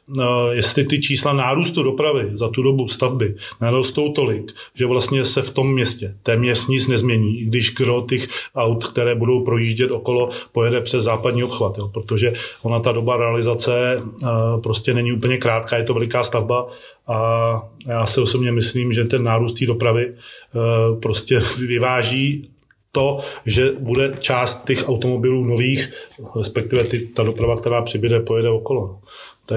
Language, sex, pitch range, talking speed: Czech, male, 115-125 Hz, 150 wpm